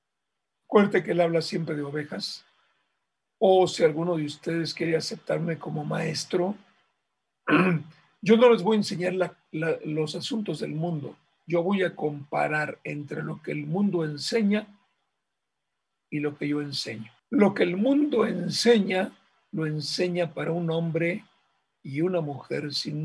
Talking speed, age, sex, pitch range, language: 150 wpm, 60-79, male, 155-195 Hz, Spanish